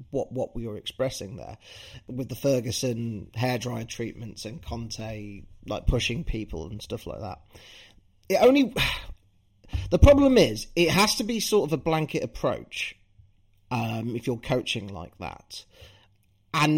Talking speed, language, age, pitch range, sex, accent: 150 wpm, English, 30-49, 110-160 Hz, male, British